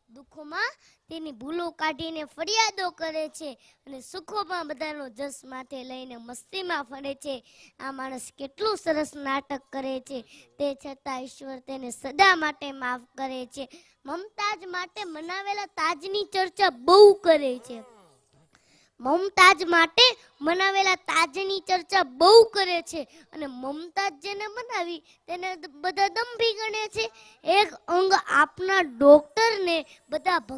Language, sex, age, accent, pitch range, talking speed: Hindi, male, 20-39, native, 275-370 Hz, 80 wpm